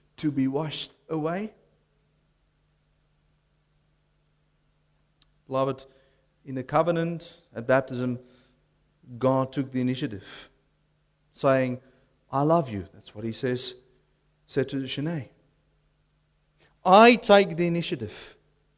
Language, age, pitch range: English, 40-59, 140-200 Hz